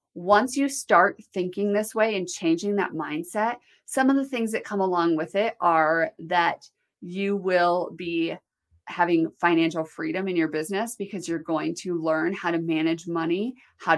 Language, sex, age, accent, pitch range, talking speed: English, female, 30-49, American, 170-215 Hz, 170 wpm